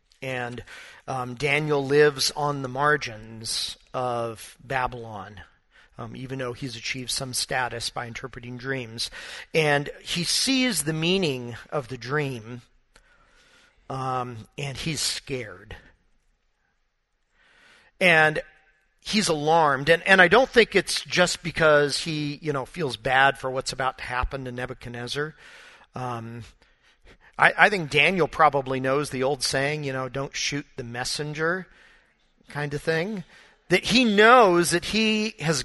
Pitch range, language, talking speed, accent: 130-170 Hz, English, 135 wpm, American